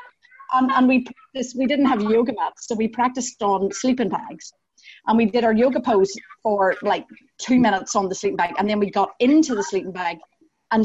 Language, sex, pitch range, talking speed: English, female, 185-235 Hz, 210 wpm